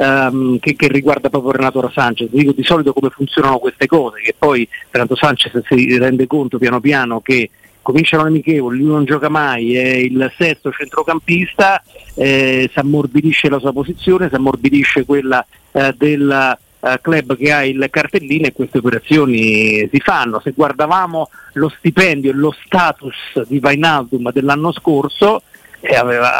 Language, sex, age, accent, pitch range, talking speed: Italian, male, 50-69, native, 130-155 Hz, 155 wpm